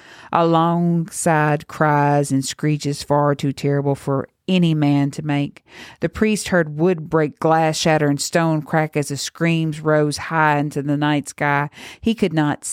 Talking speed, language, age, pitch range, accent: 150 wpm, English, 50-69, 145-160 Hz, American